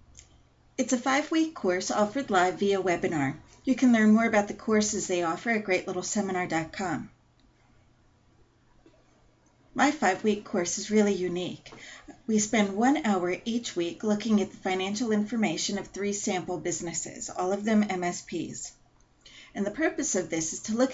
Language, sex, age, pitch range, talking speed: English, female, 40-59, 170-215 Hz, 150 wpm